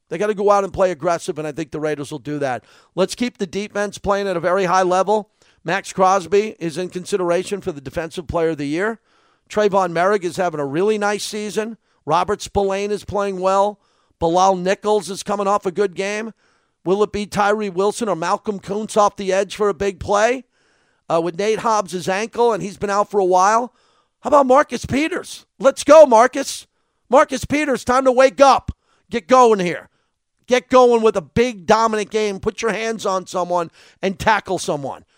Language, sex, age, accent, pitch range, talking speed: English, male, 50-69, American, 165-210 Hz, 200 wpm